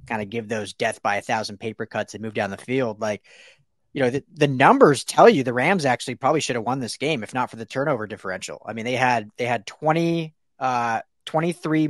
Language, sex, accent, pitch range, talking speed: English, male, American, 125-160 Hz, 235 wpm